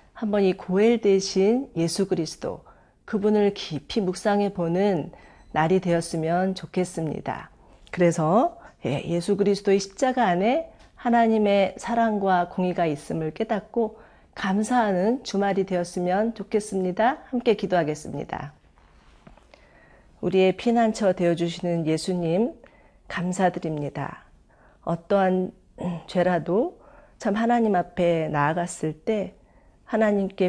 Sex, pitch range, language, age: female, 170-205 Hz, Korean, 40-59